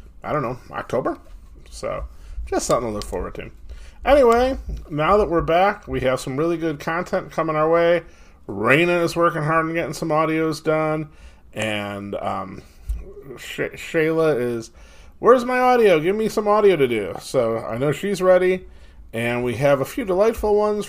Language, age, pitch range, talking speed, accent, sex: English, 30-49, 105-175 Hz, 170 wpm, American, male